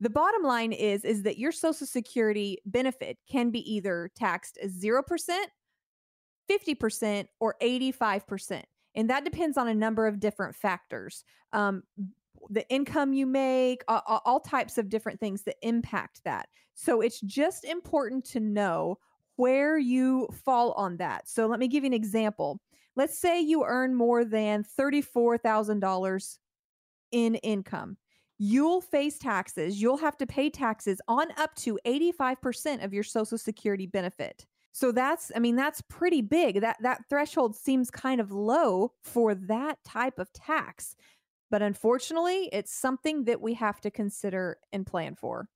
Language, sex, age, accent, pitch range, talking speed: English, female, 30-49, American, 210-270 Hz, 155 wpm